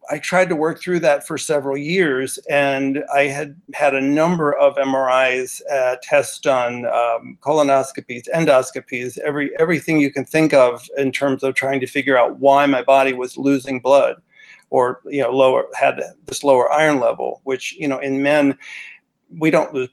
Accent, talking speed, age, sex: American, 180 wpm, 50-69, male